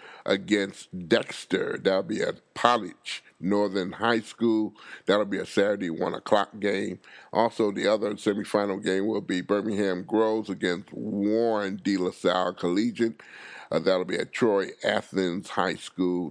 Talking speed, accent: 145 wpm, American